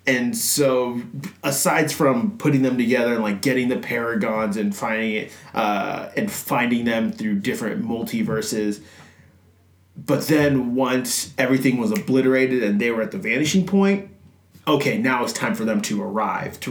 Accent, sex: American, male